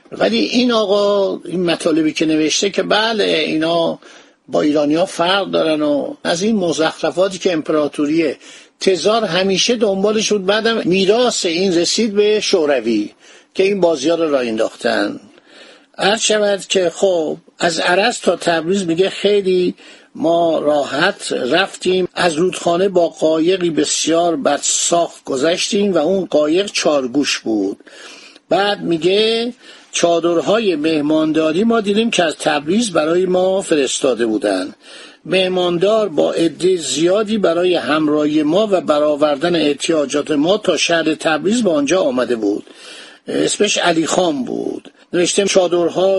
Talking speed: 125 wpm